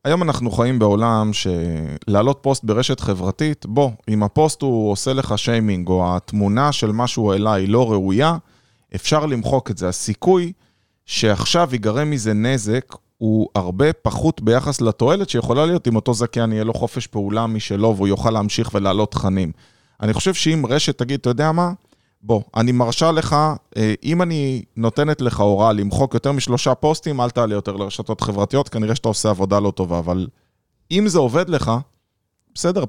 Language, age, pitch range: Hebrew, 20-39, 105-140 Hz